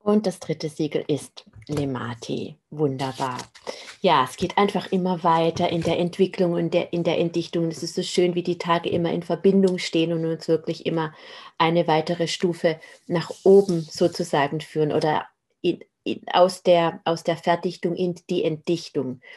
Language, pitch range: German, 165-190 Hz